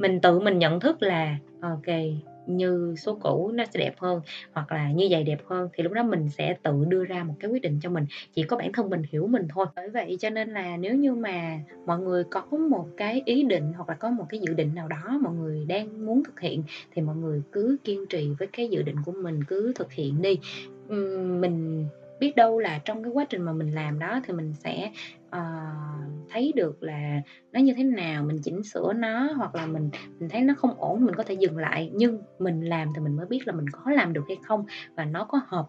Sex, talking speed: female, 245 wpm